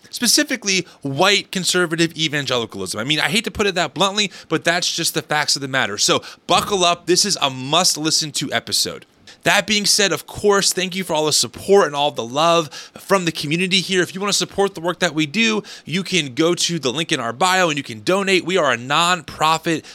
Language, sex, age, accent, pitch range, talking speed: English, male, 30-49, American, 145-185 Hz, 225 wpm